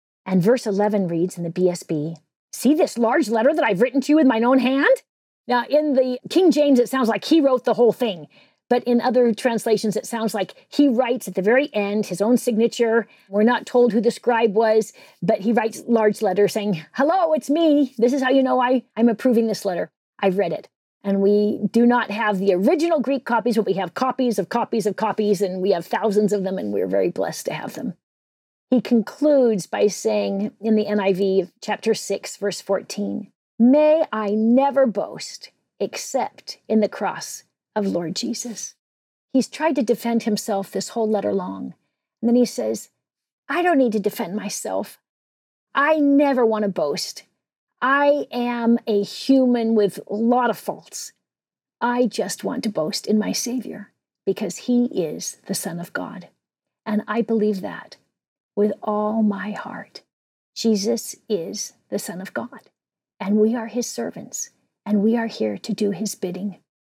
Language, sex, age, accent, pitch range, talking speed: English, female, 40-59, American, 205-245 Hz, 185 wpm